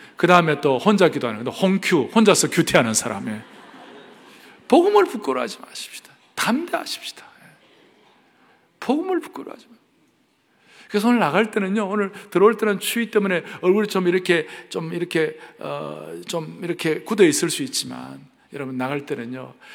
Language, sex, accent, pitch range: Korean, male, native, 115-175 Hz